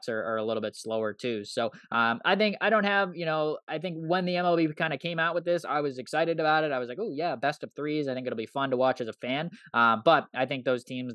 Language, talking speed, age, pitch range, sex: English, 305 wpm, 20-39, 115-140 Hz, male